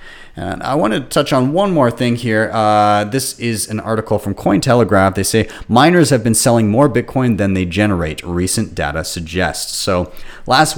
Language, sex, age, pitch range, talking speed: English, male, 30-49, 85-110 Hz, 185 wpm